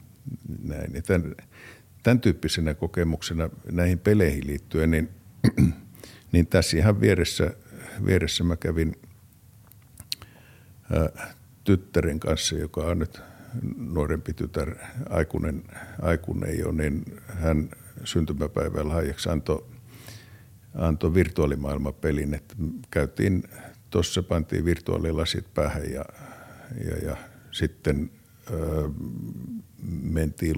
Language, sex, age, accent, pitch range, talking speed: Finnish, male, 60-79, native, 80-110 Hz, 85 wpm